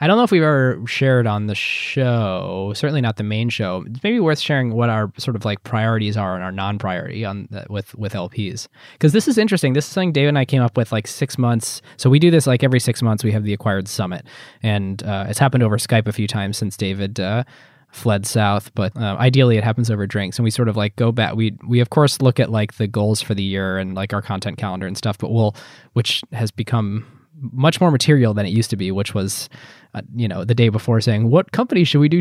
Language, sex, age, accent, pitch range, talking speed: English, male, 20-39, American, 100-125 Hz, 255 wpm